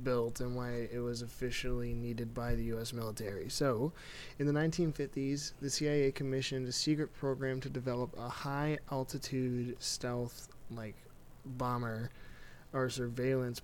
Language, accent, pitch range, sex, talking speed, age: English, American, 120-135 Hz, male, 135 wpm, 20-39